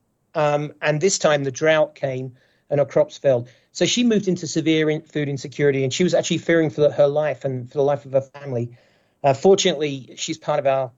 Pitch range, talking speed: 135-165 Hz, 225 wpm